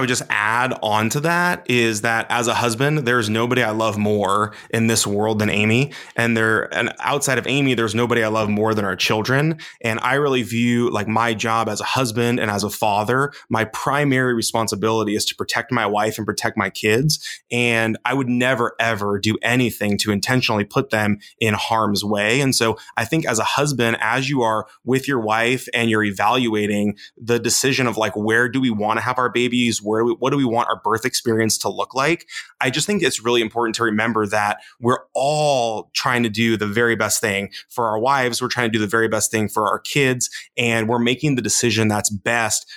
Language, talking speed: English, 215 wpm